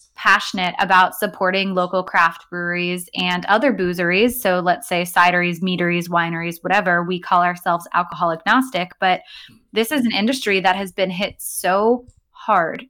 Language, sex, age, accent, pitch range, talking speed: English, female, 20-39, American, 180-205 Hz, 150 wpm